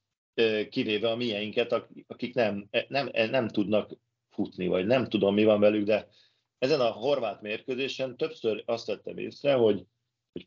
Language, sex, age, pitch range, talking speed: Hungarian, male, 40-59, 100-120 Hz, 150 wpm